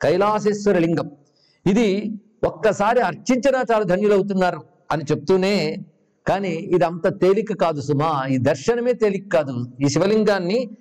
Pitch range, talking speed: 175-220 Hz, 115 wpm